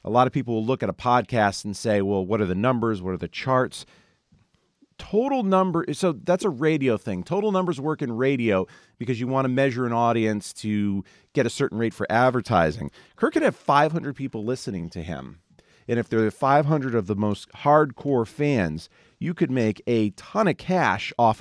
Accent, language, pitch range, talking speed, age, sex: American, English, 105-150 Hz, 200 wpm, 40-59, male